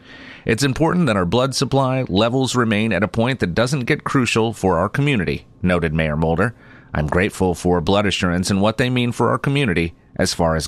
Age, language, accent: 30-49, English, American